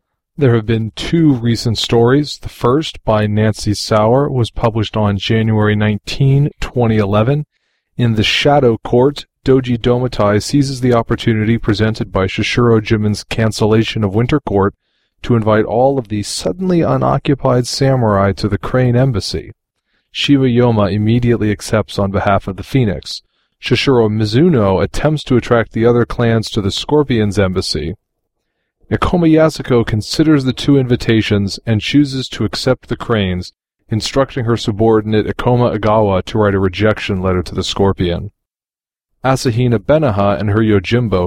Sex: male